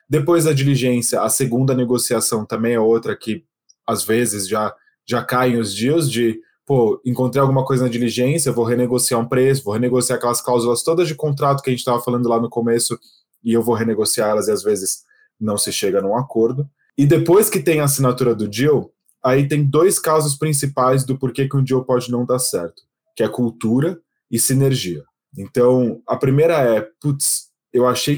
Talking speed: 190 wpm